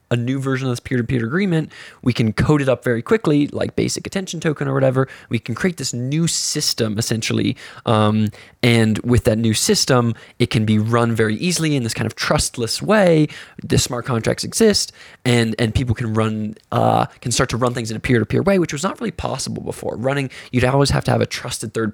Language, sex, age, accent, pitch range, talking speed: English, male, 20-39, American, 115-150 Hz, 215 wpm